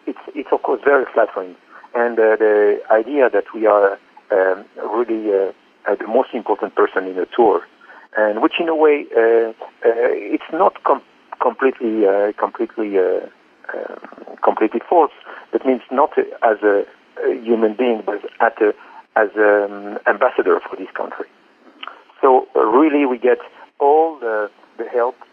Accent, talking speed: French, 165 wpm